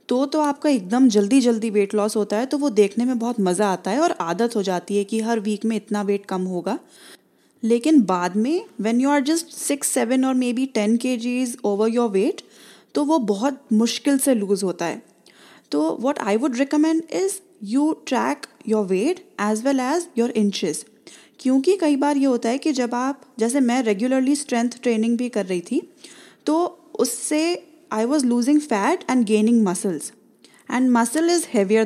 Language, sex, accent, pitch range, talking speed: English, female, Indian, 220-300 Hz, 125 wpm